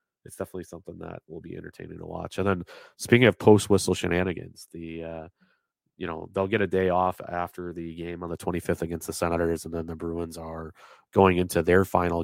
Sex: male